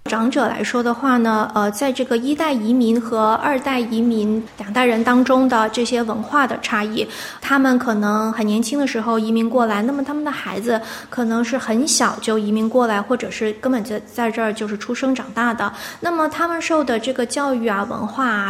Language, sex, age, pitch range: Chinese, female, 20-39, 220-270 Hz